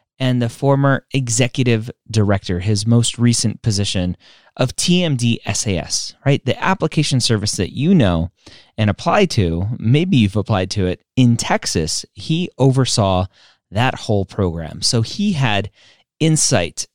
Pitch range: 95-130 Hz